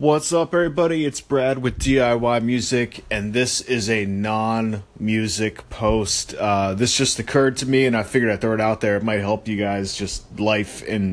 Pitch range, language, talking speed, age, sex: 105-130 Hz, English, 195 wpm, 30-49, male